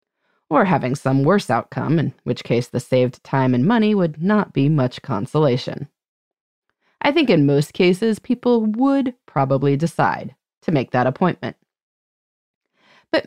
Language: English